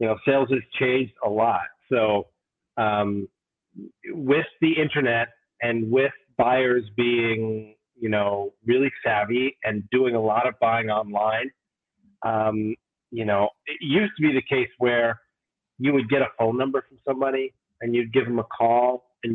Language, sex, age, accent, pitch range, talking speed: English, male, 30-49, American, 115-135 Hz, 160 wpm